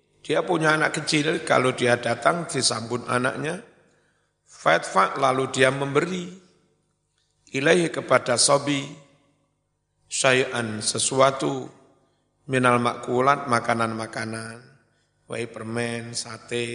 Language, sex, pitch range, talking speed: Indonesian, male, 115-135 Hz, 80 wpm